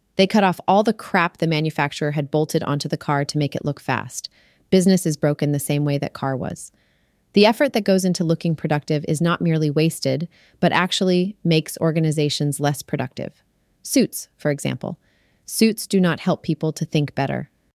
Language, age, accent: English, 30-49, American